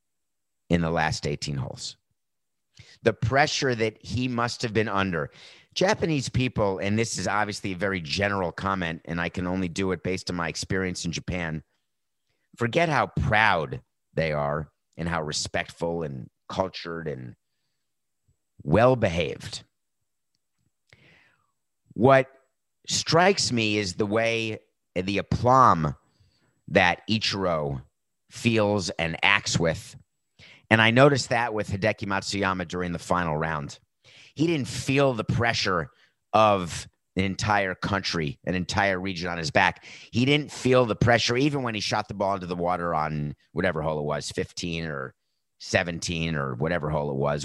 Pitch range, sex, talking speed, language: 80-115 Hz, male, 145 wpm, English